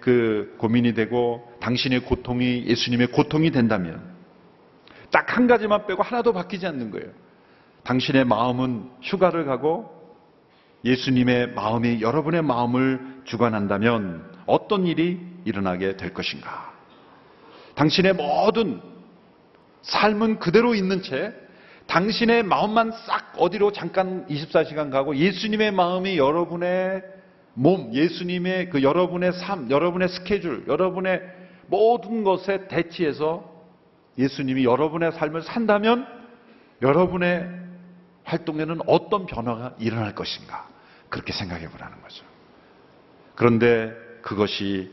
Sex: male